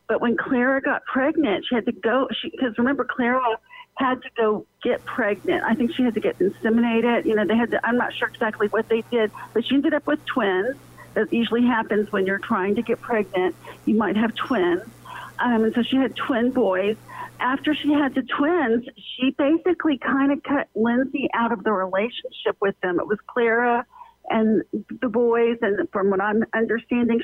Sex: female